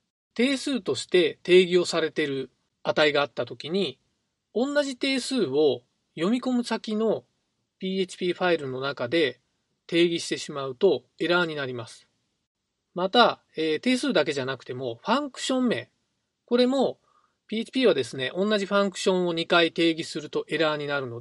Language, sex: Japanese, male